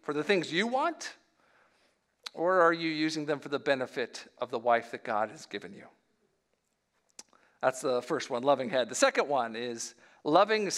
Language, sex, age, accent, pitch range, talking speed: English, male, 50-69, American, 150-205 Hz, 180 wpm